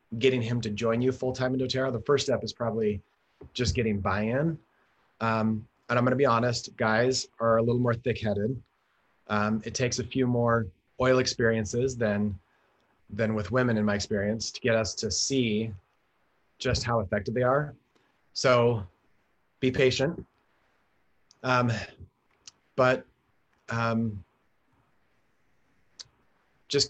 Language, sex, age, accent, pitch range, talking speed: English, male, 30-49, American, 110-130 Hz, 135 wpm